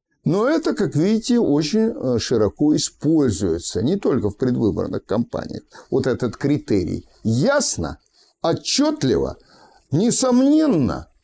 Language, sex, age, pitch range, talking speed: Russian, male, 60-79, 125-180 Hz, 95 wpm